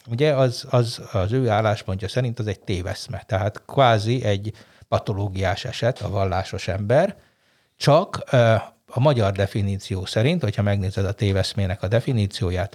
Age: 60-79